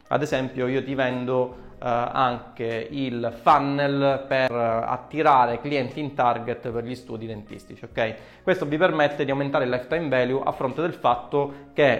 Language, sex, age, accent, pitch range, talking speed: Italian, male, 30-49, native, 120-150 Hz, 160 wpm